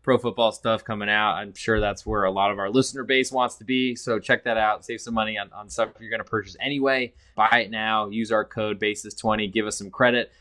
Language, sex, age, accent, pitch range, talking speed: English, male, 20-39, American, 105-125 Hz, 255 wpm